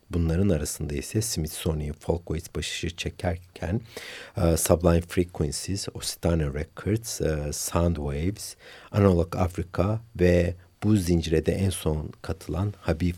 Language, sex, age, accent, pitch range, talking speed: Turkish, male, 60-79, native, 80-100 Hz, 105 wpm